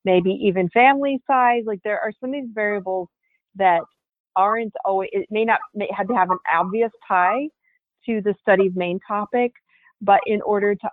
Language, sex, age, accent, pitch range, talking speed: English, female, 40-59, American, 180-220 Hz, 175 wpm